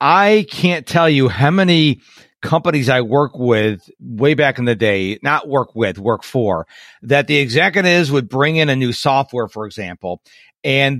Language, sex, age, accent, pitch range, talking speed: English, male, 50-69, American, 135-180 Hz, 175 wpm